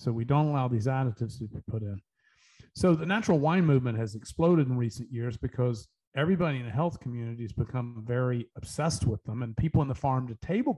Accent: American